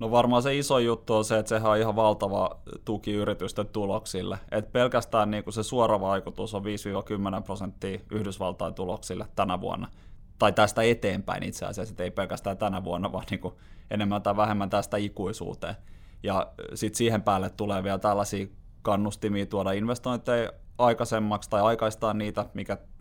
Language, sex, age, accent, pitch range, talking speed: Finnish, male, 20-39, native, 95-110 Hz, 150 wpm